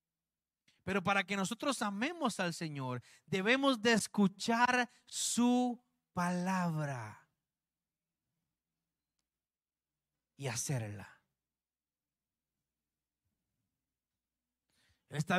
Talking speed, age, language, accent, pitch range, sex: 60 wpm, 40-59, Spanish, Mexican, 140-235 Hz, male